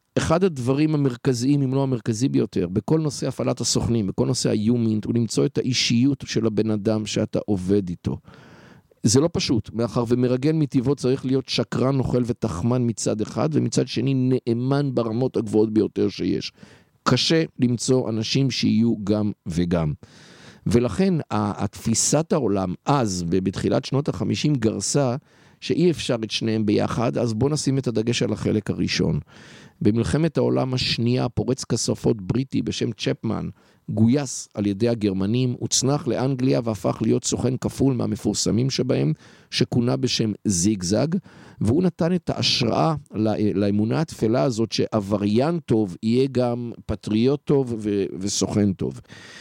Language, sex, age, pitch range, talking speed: Hebrew, male, 50-69, 105-135 Hz, 130 wpm